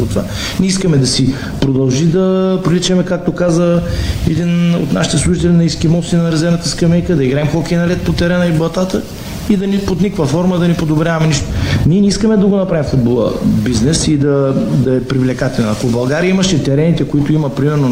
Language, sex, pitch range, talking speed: Bulgarian, male, 135-170 Hz, 195 wpm